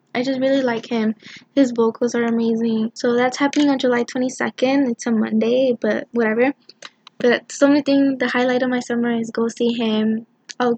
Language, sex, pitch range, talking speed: English, female, 230-255 Hz, 190 wpm